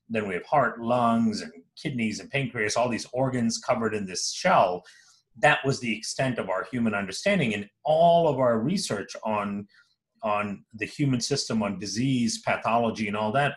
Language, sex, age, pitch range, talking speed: English, male, 40-59, 110-160 Hz, 175 wpm